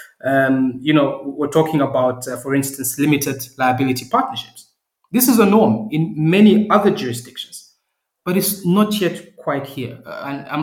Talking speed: 165 wpm